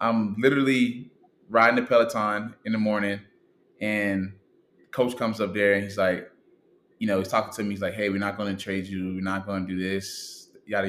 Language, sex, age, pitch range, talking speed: English, male, 20-39, 95-110 Hz, 210 wpm